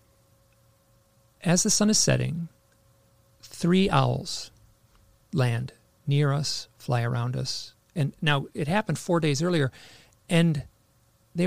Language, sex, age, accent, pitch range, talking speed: English, male, 40-59, American, 115-155 Hz, 115 wpm